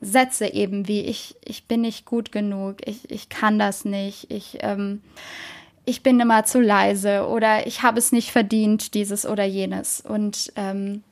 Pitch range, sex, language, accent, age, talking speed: 215-265 Hz, female, German, German, 10-29, 165 wpm